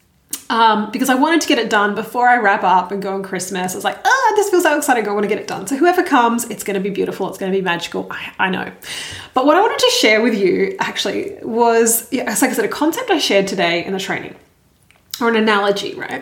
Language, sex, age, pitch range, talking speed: English, female, 20-39, 205-305 Hz, 270 wpm